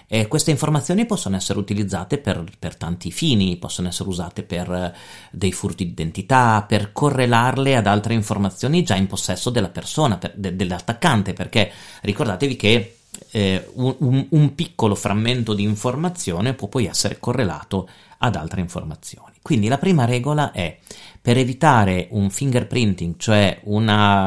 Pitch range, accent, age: 100-130 Hz, native, 40-59